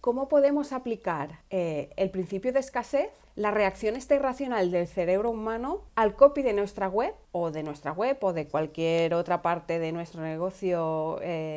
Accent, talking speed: Spanish, 170 wpm